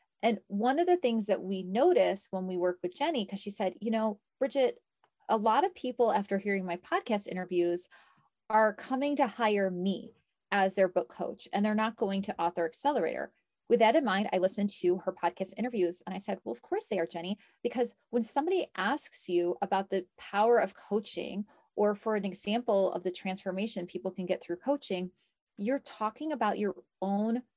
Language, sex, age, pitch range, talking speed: English, female, 30-49, 185-235 Hz, 195 wpm